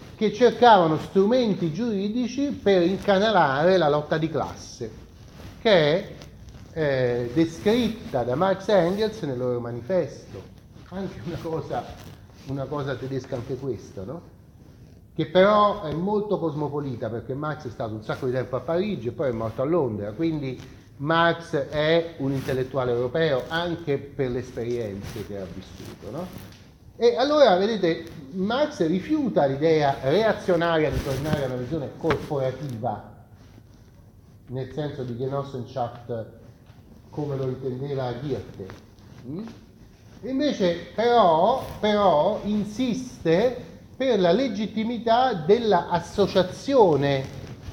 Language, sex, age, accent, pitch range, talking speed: Italian, male, 40-59, native, 125-185 Hz, 120 wpm